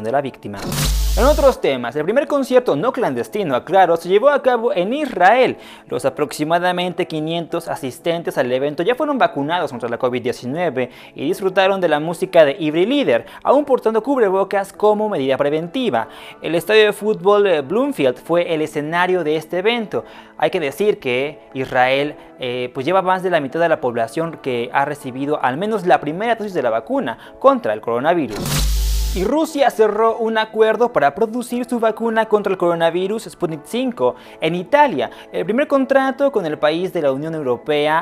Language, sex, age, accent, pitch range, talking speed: Spanish, male, 30-49, Mexican, 150-225 Hz, 175 wpm